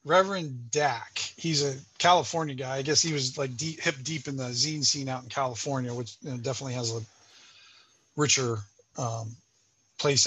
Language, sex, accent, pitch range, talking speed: English, male, American, 130-170 Hz, 175 wpm